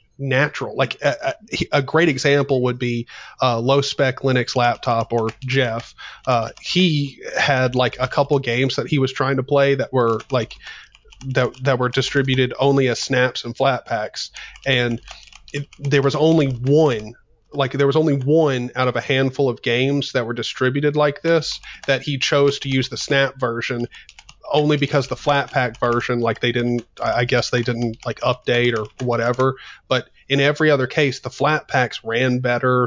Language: English